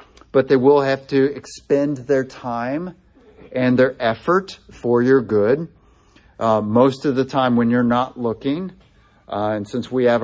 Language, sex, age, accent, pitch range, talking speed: English, male, 50-69, American, 110-130 Hz, 165 wpm